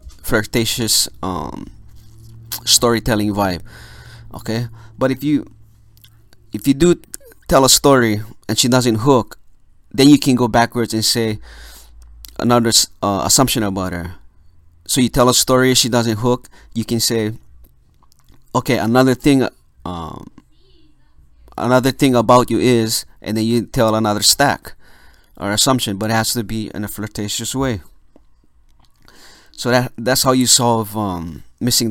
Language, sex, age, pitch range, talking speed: English, male, 30-49, 95-120 Hz, 145 wpm